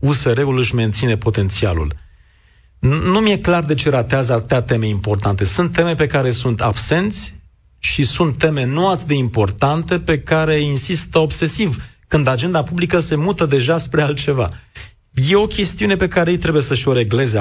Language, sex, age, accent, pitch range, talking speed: Romanian, male, 40-59, native, 115-160 Hz, 160 wpm